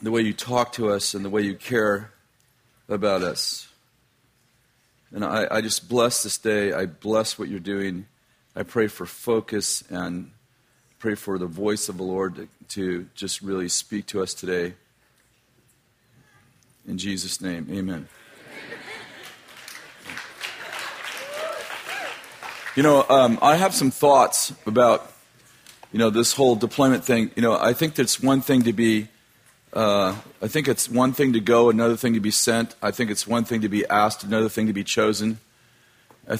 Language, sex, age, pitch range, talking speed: English, male, 40-59, 105-125 Hz, 165 wpm